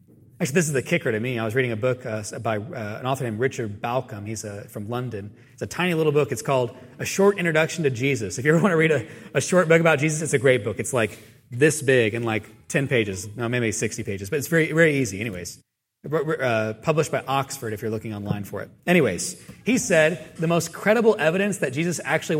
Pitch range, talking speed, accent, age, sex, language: 120-170 Hz, 240 wpm, American, 30-49, male, English